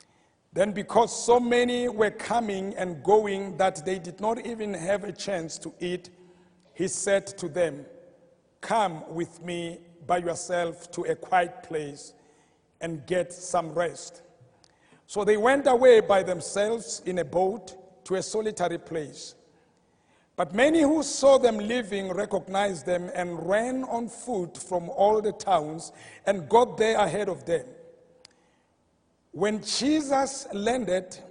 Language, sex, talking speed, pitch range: English, male, 140 wpm, 175-245 Hz